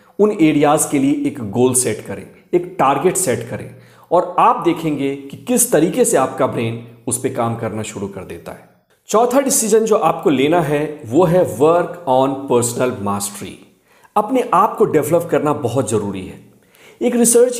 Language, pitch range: Hindi, 140-195 Hz